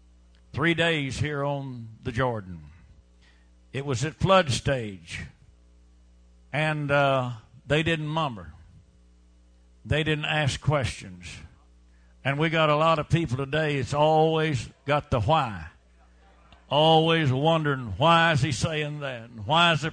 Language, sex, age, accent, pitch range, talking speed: English, male, 60-79, American, 120-165 Hz, 135 wpm